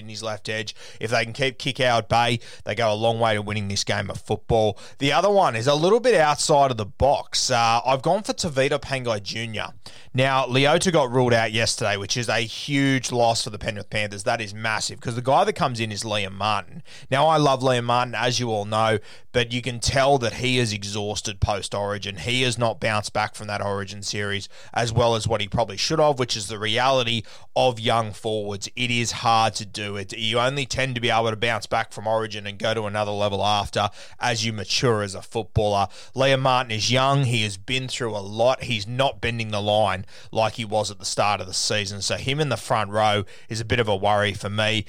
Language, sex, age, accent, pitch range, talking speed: English, male, 20-39, Australian, 105-125 Hz, 235 wpm